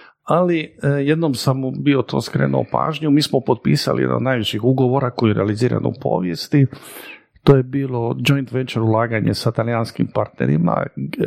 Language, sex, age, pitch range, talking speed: Croatian, male, 50-69, 115-140 Hz, 145 wpm